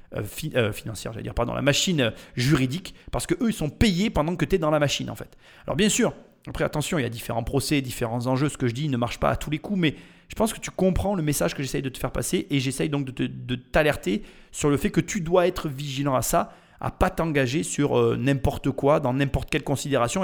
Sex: male